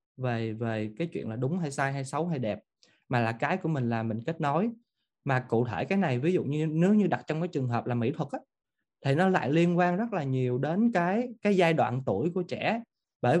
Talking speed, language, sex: 255 wpm, Vietnamese, male